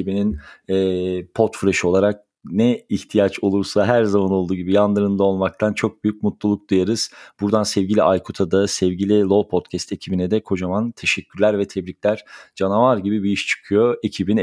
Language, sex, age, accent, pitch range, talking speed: Turkish, male, 40-59, native, 95-115 Hz, 150 wpm